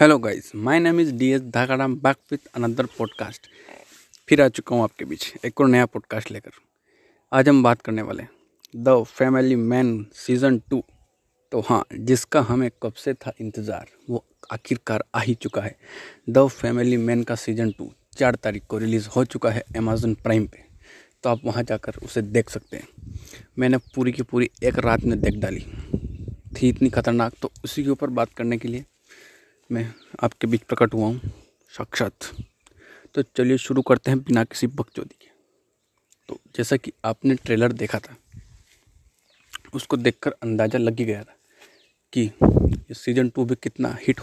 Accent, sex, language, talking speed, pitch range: native, male, Hindi, 175 wpm, 110-130 Hz